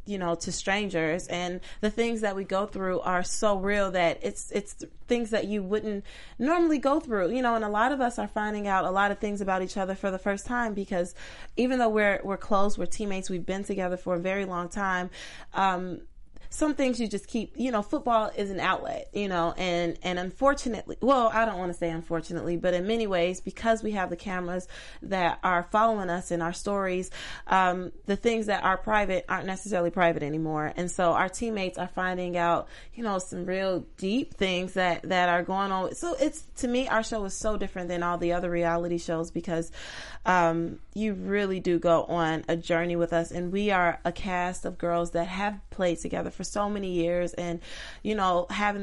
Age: 30-49